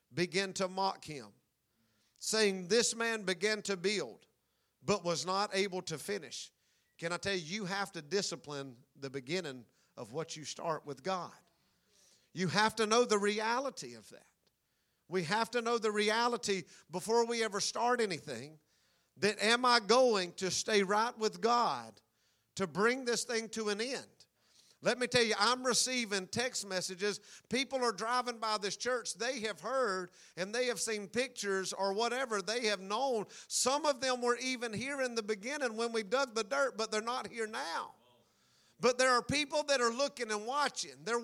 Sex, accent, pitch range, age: male, American, 190-240 Hz, 50-69